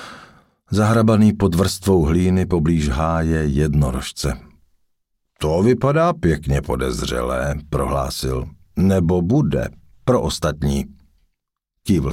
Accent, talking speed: native, 85 wpm